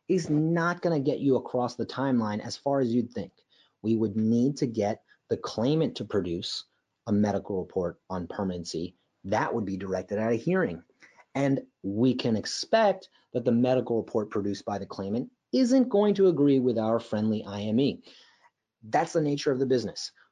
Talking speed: 175 wpm